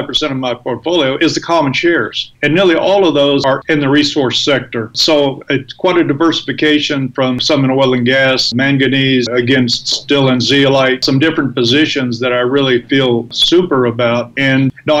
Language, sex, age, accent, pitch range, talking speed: English, male, 50-69, American, 125-150 Hz, 180 wpm